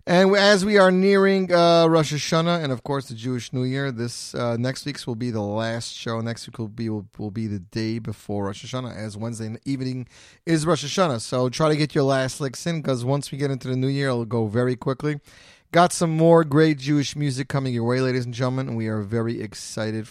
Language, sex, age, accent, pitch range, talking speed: English, male, 30-49, American, 115-165 Hz, 240 wpm